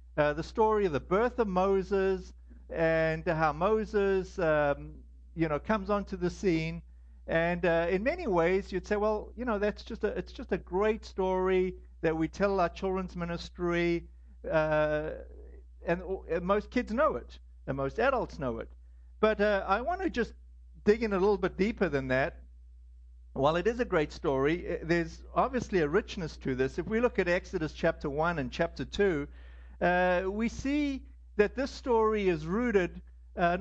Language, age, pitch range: English, 60-79, 150-205 Hz